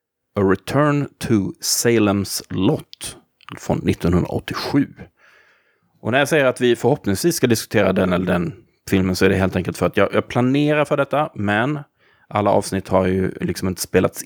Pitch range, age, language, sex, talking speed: 95-130 Hz, 30-49, Swedish, male, 165 wpm